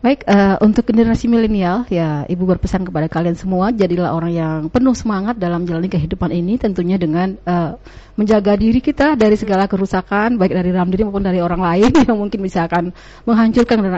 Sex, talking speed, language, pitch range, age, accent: female, 175 wpm, Indonesian, 175-215 Hz, 30-49, native